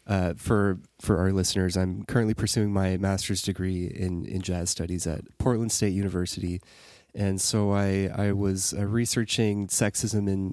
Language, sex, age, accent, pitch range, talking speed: English, male, 20-39, American, 95-110 Hz, 160 wpm